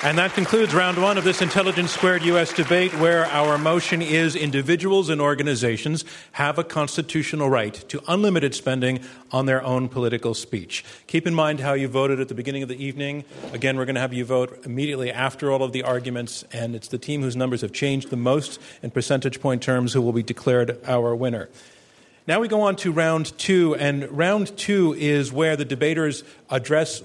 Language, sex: English, male